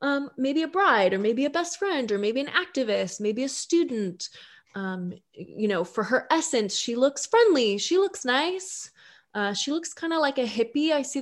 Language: English